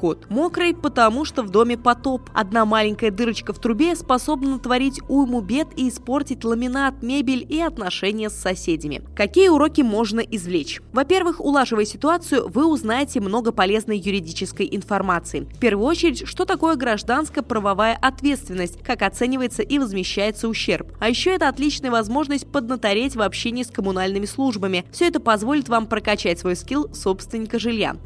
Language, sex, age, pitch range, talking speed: Russian, female, 20-39, 200-285 Hz, 145 wpm